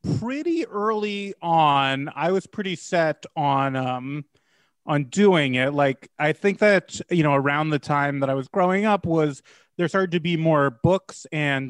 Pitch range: 140-170 Hz